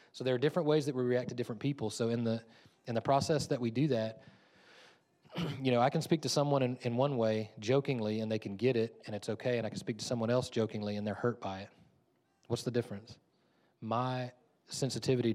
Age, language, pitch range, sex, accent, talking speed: 30-49, English, 105-125 Hz, male, American, 230 wpm